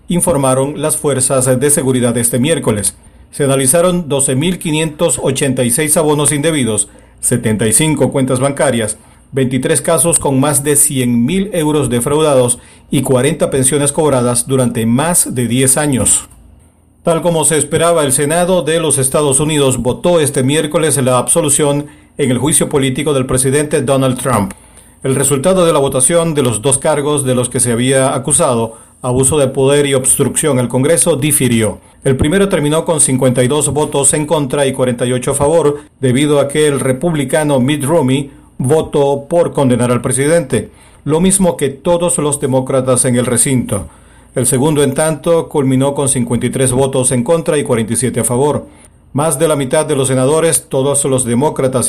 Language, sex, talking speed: English, male, 155 wpm